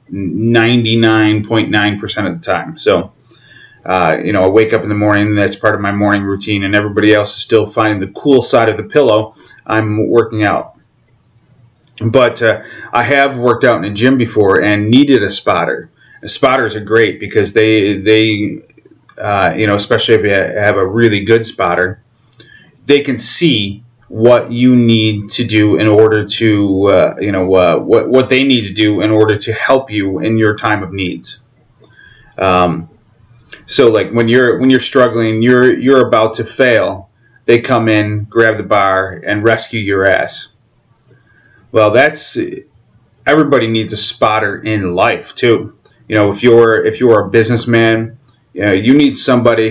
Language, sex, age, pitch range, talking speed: English, male, 30-49, 105-120 Hz, 175 wpm